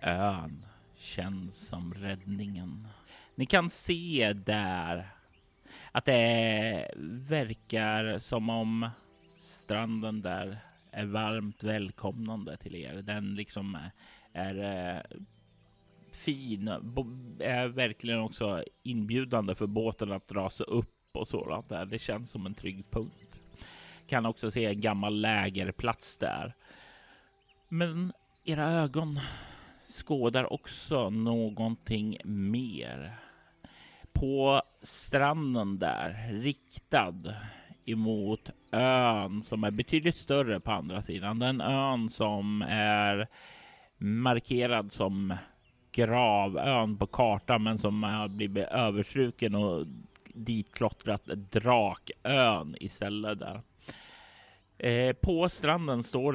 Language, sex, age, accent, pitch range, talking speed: Swedish, male, 30-49, native, 100-125 Hz, 100 wpm